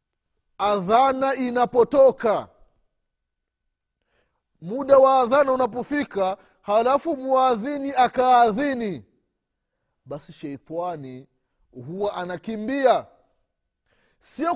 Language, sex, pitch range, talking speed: Swahili, male, 170-270 Hz, 60 wpm